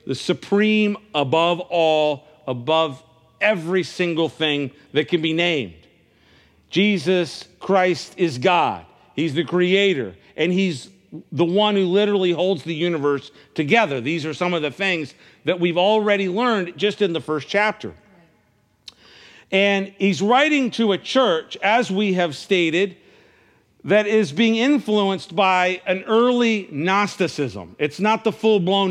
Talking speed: 135 wpm